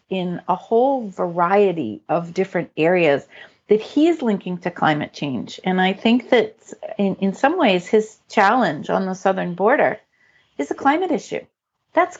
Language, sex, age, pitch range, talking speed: English, female, 50-69, 185-235 Hz, 155 wpm